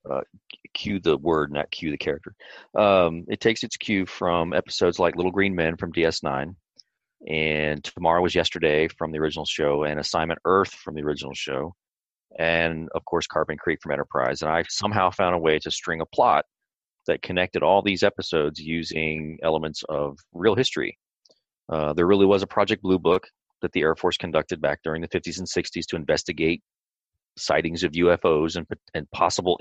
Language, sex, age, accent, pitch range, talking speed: English, male, 30-49, American, 75-85 Hz, 180 wpm